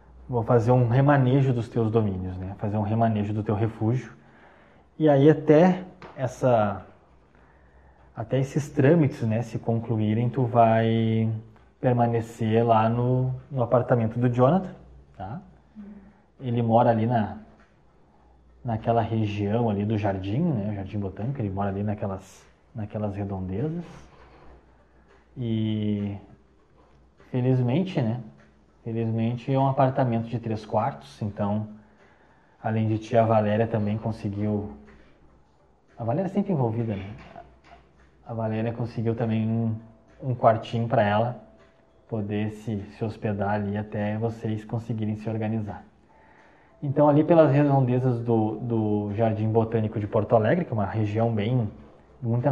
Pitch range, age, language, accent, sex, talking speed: 105-125 Hz, 20-39, Portuguese, Brazilian, male, 130 wpm